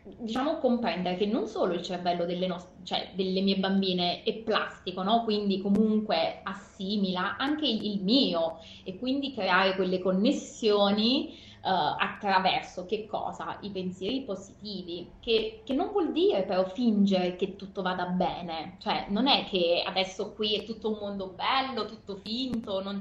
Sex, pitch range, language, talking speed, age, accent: female, 185-225 Hz, Italian, 155 wpm, 20-39, native